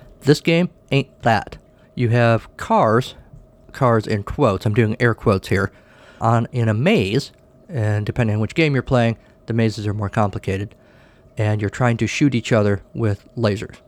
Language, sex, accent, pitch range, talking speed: English, male, American, 110-140 Hz, 175 wpm